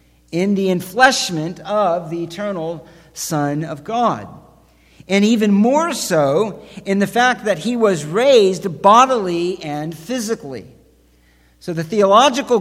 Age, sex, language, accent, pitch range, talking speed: 50-69, male, English, American, 120-185 Hz, 125 wpm